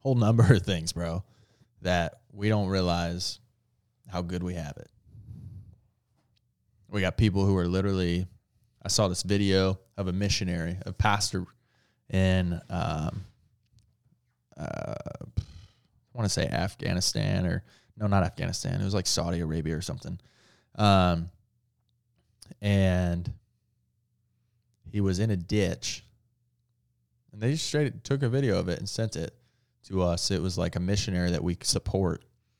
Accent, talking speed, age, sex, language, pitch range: American, 140 wpm, 20-39, male, English, 90-115 Hz